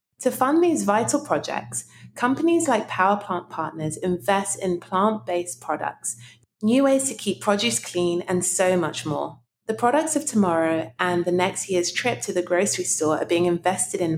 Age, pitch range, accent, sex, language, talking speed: 30-49, 160-210 Hz, British, female, English, 175 wpm